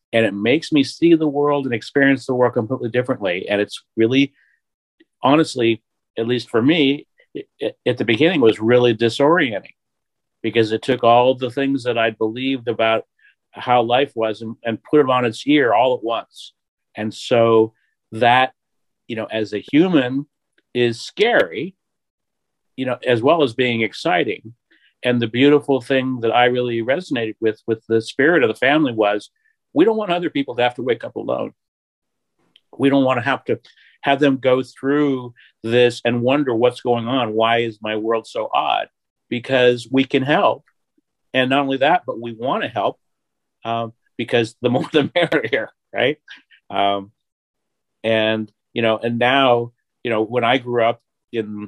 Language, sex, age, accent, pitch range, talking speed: English, male, 50-69, American, 115-135 Hz, 175 wpm